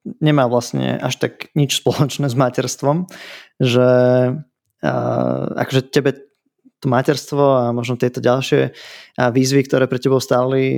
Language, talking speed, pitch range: Slovak, 130 wpm, 125-140 Hz